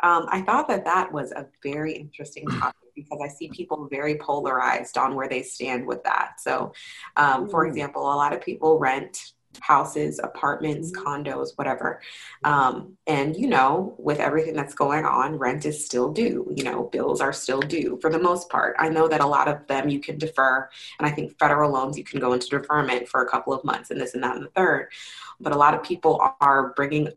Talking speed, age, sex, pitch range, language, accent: 215 wpm, 20-39, female, 140-160 Hz, English, American